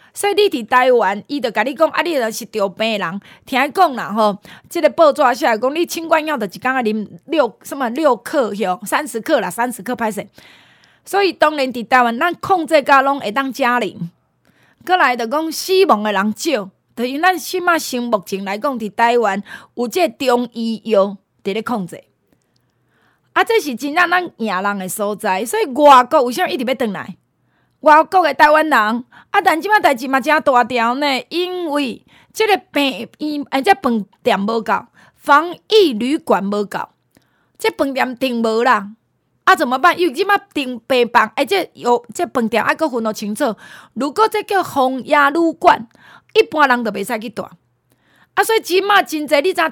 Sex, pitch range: female, 220-315 Hz